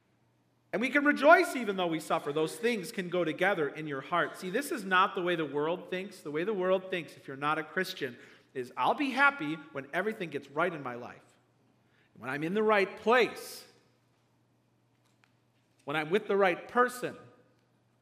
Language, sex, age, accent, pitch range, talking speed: English, male, 50-69, American, 135-215 Hz, 195 wpm